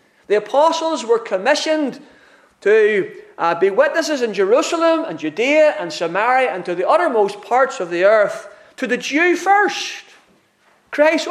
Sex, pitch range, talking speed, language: male, 175-280 Hz, 145 wpm, English